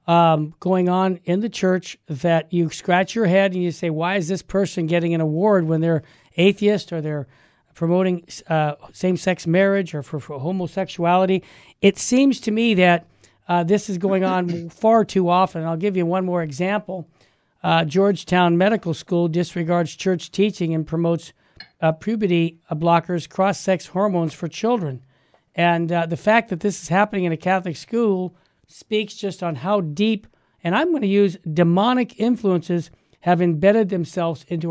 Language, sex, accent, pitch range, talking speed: English, male, American, 170-205 Hz, 170 wpm